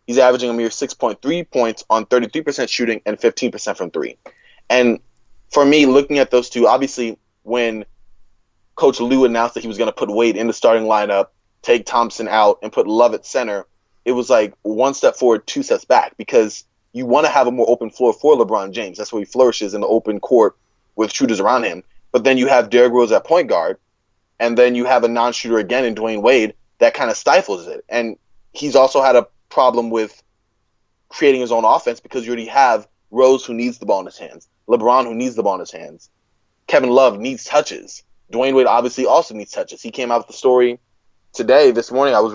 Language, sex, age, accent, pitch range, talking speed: English, male, 20-39, American, 110-125 Hz, 215 wpm